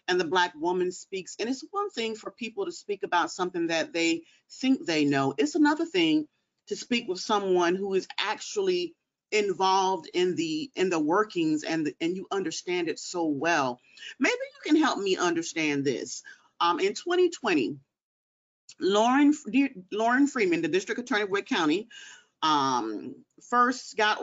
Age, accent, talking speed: 40-59, American, 165 wpm